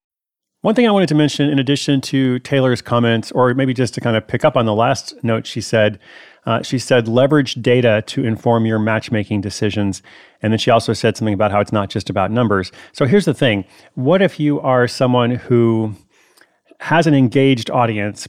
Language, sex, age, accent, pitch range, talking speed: English, male, 30-49, American, 105-130 Hz, 205 wpm